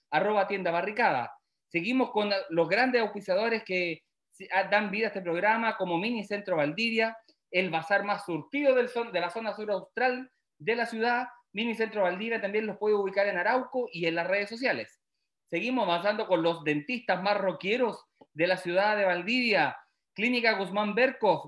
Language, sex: Spanish, male